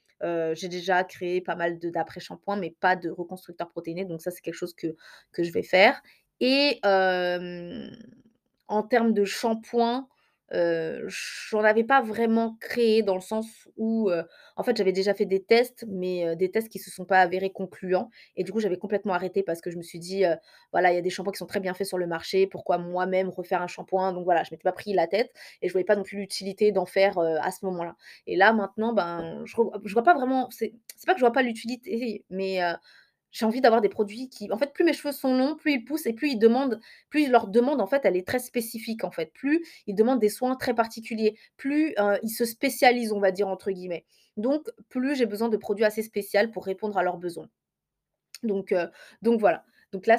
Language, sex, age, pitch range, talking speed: French, female, 20-39, 185-235 Hz, 235 wpm